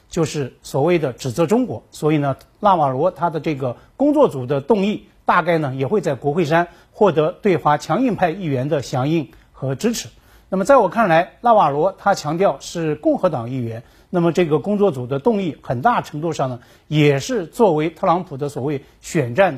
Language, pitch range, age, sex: Chinese, 145-195 Hz, 50-69, male